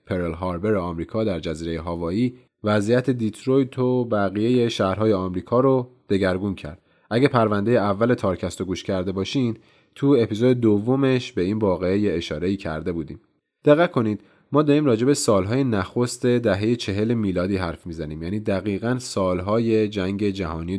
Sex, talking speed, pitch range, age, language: male, 140 wpm, 95-120 Hz, 30-49, Persian